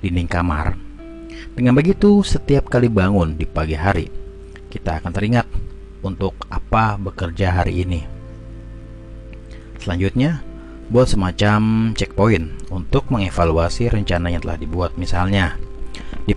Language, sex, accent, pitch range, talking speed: Indonesian, male, native, 85-110 Hz, 110 wpm